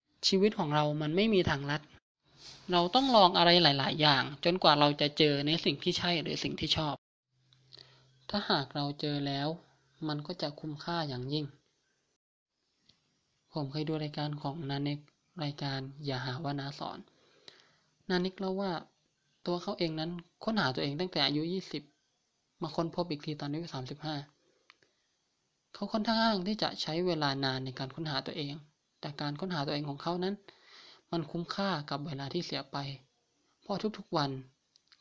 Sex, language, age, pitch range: male, Thai, 20-39, 145-175 Hz